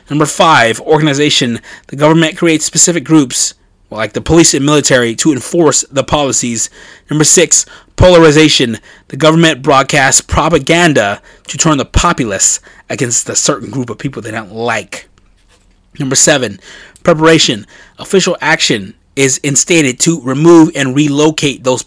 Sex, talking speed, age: male, 135 wpm, 30-49